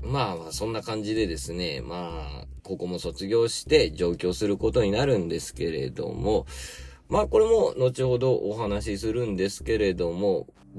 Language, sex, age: Japanese, male, 40-59